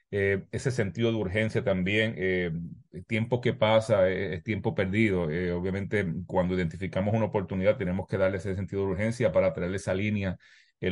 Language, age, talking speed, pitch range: English, 30-49, 175 wpm, 95-110 Hz